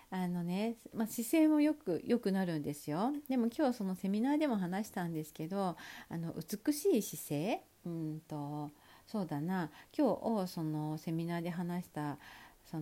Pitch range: 155-235 Hz